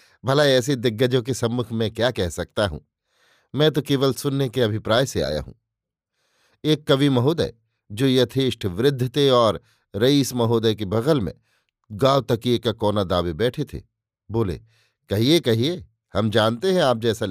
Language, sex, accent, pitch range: Hindi, male, native, 110-135 Hz